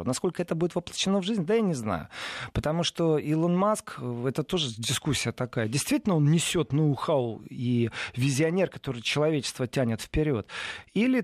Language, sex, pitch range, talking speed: Russian, male, 135-185 Hz, 155 wpm